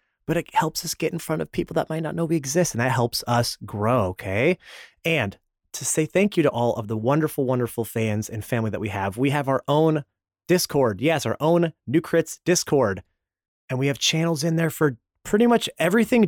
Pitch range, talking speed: 120-170 Hz, 220 wpm